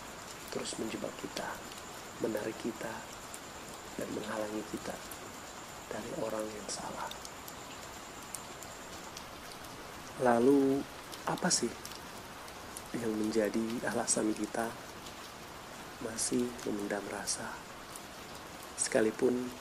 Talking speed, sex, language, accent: 70 wpm, male, Indonesian, native